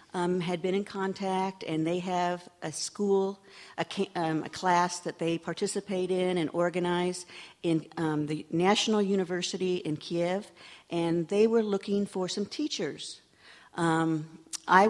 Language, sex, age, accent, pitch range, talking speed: English, female, 50-69, American, 165-210 Hz, 140 wpm